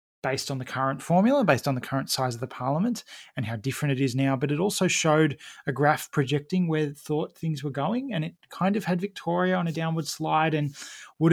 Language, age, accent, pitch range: English, 20-39, Australian, 135-155 Hz